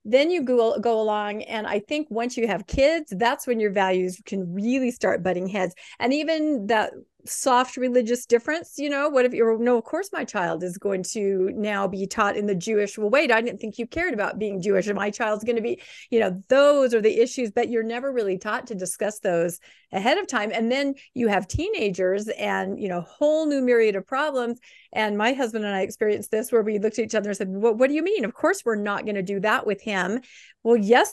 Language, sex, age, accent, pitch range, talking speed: English, female, 40-59, American, 200-255 Hz, 235 wpm